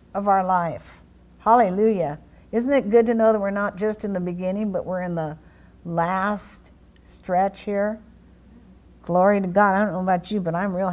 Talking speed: 185 wpm